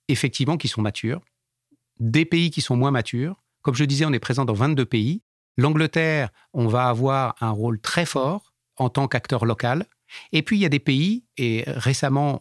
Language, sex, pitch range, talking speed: French, male, 120-150 Hz, 195 wpm